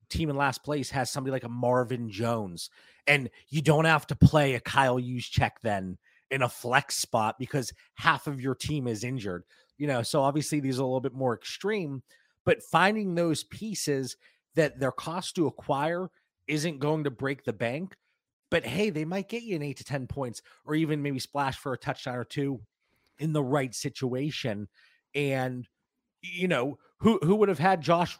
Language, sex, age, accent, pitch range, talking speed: English, male, 30-49, American, 120-150 Hz, 195 wpm